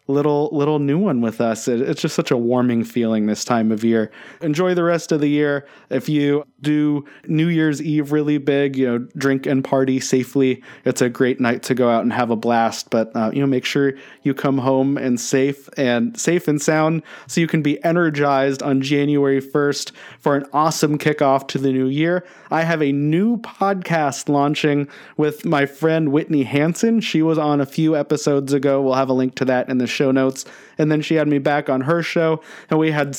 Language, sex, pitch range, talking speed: English, male, 135-155 Hz, 215 wpm